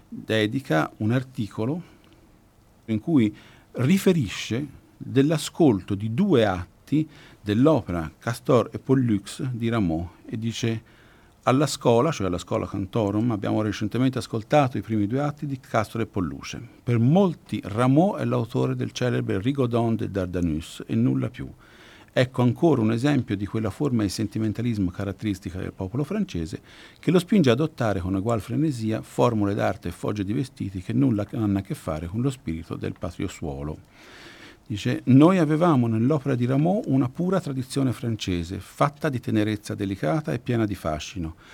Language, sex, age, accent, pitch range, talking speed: Italian, male, 50-69, native, 100-130 Hz, 150 wpm